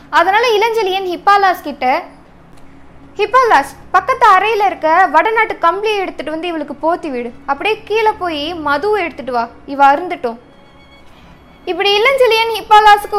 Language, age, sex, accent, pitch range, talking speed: Tamil, 20-39, female, native, 290-390 Hz, 120 wpm